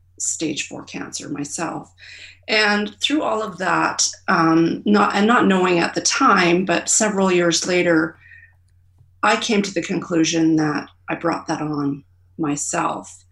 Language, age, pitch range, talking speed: English, 30-49, 140-180 Hz, 145 wpm